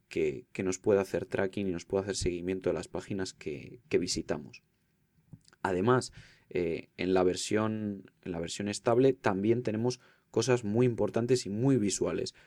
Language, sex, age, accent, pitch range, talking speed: Spanish, male, 20-39, Spanish, 95-125 Hz, 165 wpm